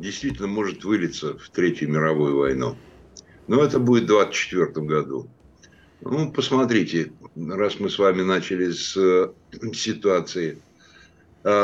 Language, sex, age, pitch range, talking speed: Russian, male, 60-79, 85-115 Hz, 130 wpm